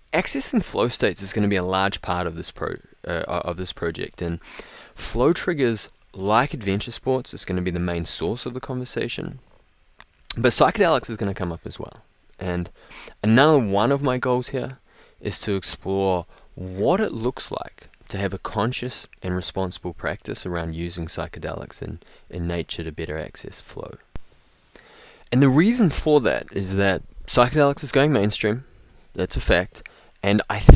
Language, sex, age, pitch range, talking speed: English, male, 20-39, 90-125 Hz, 175 wpm